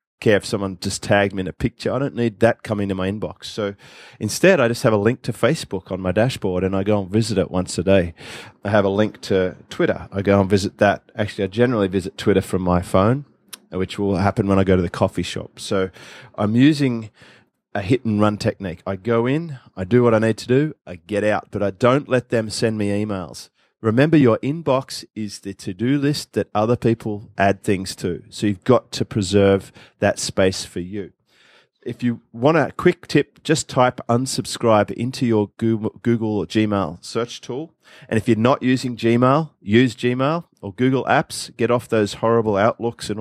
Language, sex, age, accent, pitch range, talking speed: English, male, 30-49, Australian, 100-120 Hz, 210 wpm